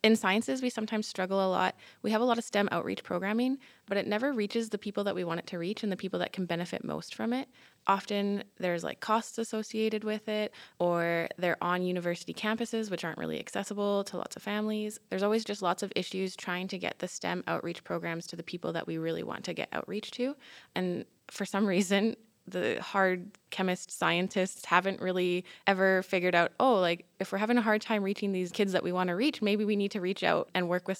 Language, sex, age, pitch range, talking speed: English, female, 20-39, 180-205 Hz, 230 wpm